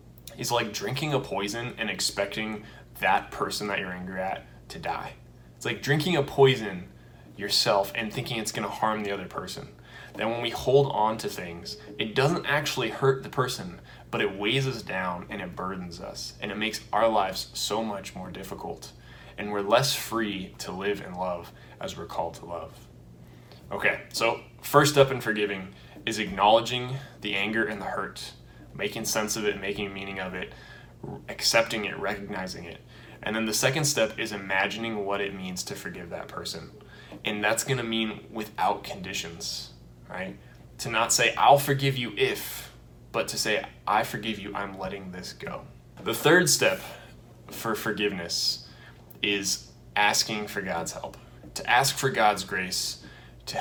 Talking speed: 170 wpm